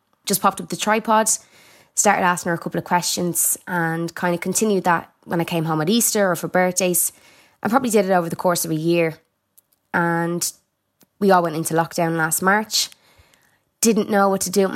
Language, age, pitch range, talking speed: English, 20-39, 175-200 Hz, 205 wpm